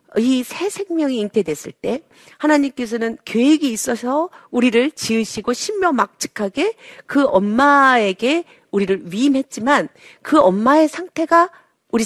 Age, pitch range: 40-59, 205-290 Hz